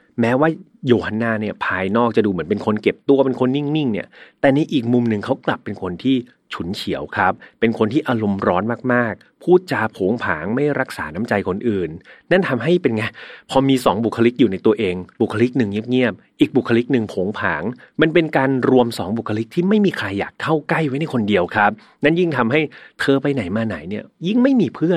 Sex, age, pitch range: male, 30-49, 110-155 Hz